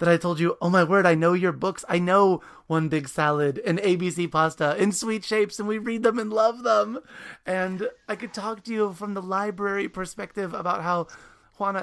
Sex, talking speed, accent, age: male, 215 wpm, American, 30-49